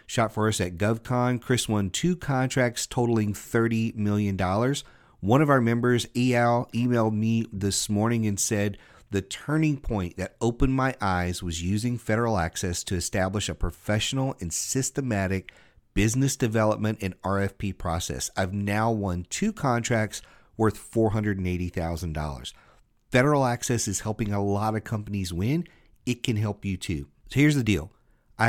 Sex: male